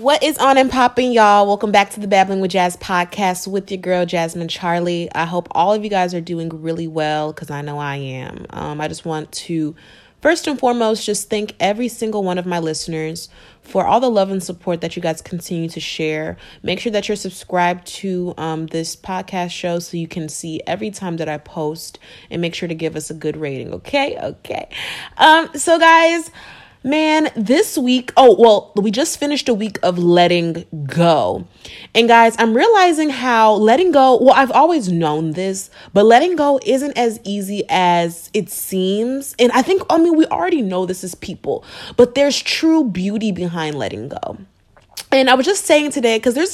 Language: English